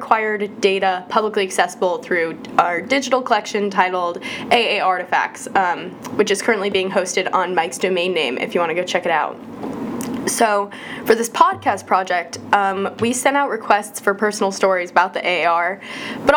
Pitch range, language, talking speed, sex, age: 185-240 Hz, English, 170 wpm, female, 10-29